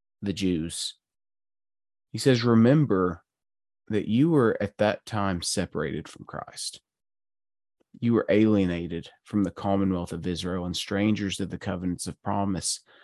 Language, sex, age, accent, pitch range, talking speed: English, male, 30-49, American, 90-110 Hz, 135 wpm